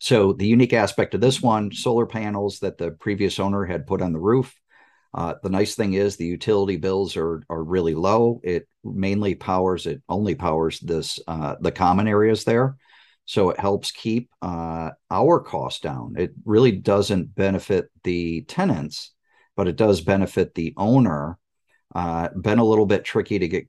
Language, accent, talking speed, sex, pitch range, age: English, American, 175 wpm, male, 85-100 Hz, 50-69